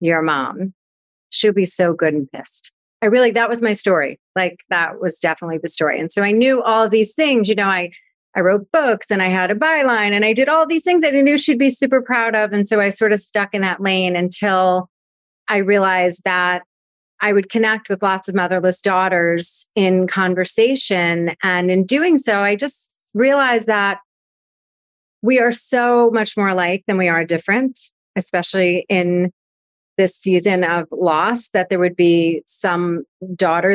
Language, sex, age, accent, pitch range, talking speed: English, female, 30-49, American, 180-230 Hz, 185 wpm